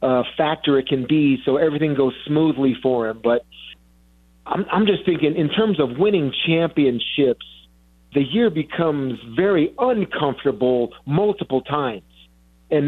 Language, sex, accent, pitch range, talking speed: English, male, American, 130-165 Hz, 135 wpm